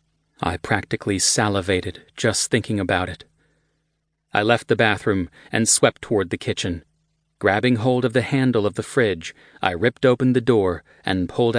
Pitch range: 100-125 Hz